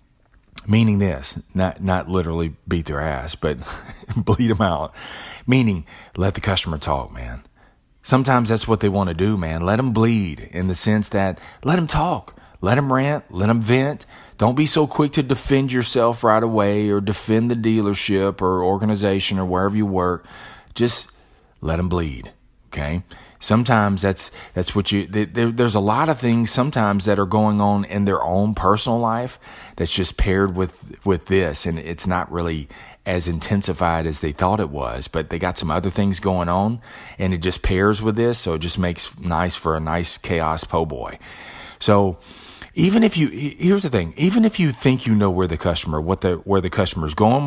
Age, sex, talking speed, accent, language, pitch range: 40-59, male, 190 wpm, American, English, 90-115 Hz